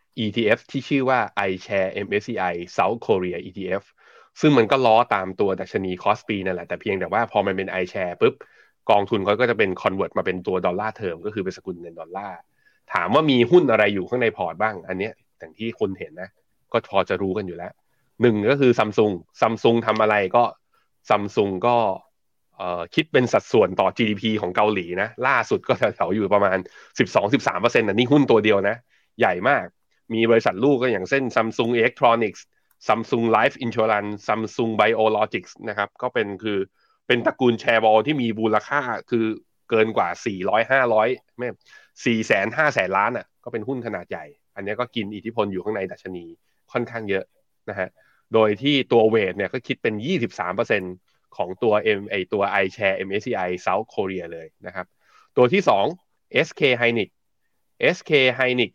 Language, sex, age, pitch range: Thai, male, 20-39, 100-120 Hz